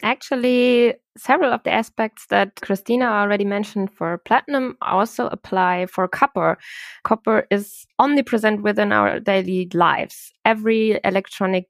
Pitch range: 185-215 Hz